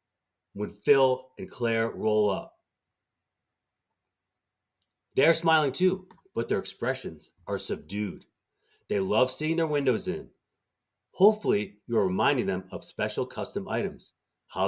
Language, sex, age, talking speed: English, male, 30-49, 120 wpm